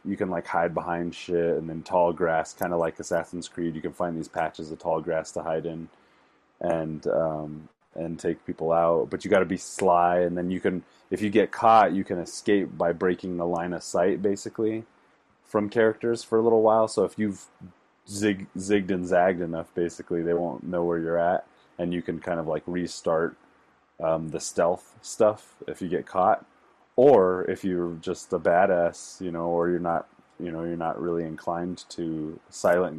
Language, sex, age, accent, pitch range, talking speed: English, male, 30-49, American, 80-90 Hz, 200 wpm